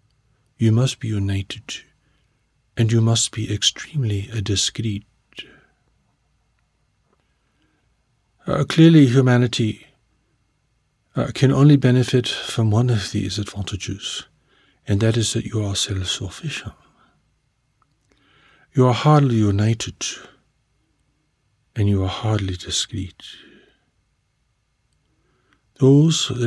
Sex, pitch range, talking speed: male, 105-130 Hz, 90 wpm